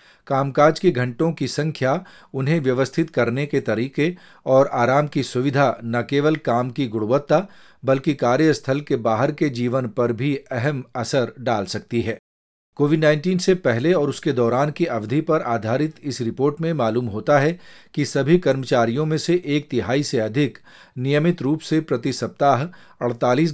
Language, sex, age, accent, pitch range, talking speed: Hindi, male, 40-59, native, 125-155 Hz, 165 wpm